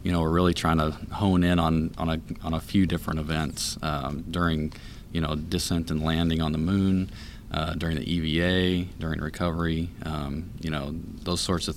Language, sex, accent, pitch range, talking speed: English, male, American, 80-95 Hz, 195 wpm